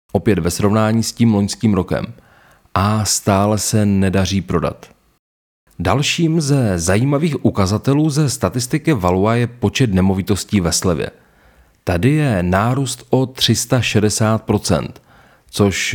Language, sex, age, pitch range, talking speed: Czech, male, 30-49, 95-130 Hz, 115 wpm